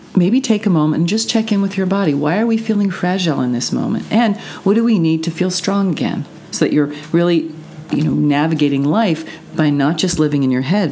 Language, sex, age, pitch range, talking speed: English, female, 40-59, 135-180 Hz, 235 wpm